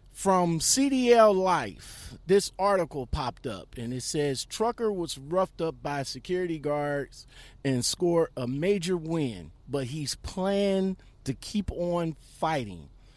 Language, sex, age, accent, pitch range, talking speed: English, male, 40-59, American, 130-185 Hz, 130 wpm